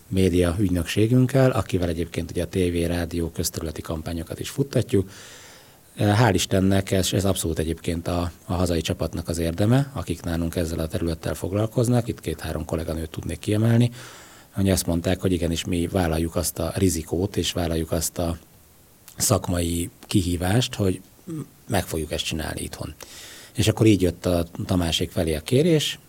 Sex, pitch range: male, 85-105 Hz